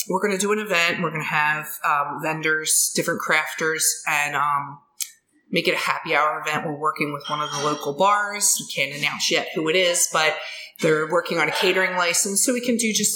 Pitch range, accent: 155-205 Hz, American